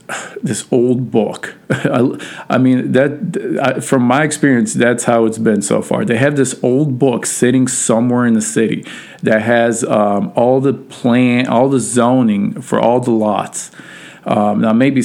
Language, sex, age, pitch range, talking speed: English, male, 40-59, 115-145 Hz, 170 wpm